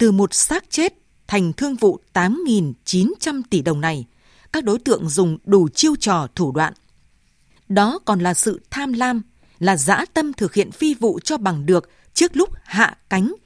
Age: 20-39